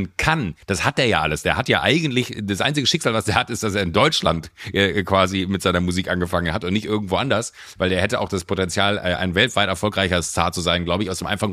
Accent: German